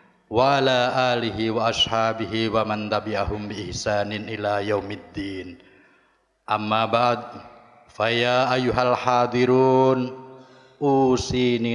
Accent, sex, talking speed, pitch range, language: native, male, 90 wpm, 110-130 Hz, Indonesian